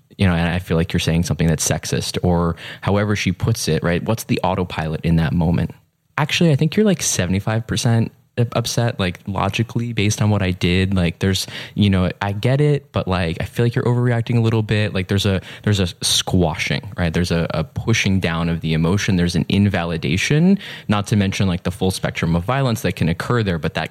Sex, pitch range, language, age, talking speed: male, 90-115 Hz, English, 20-39, 220 wpm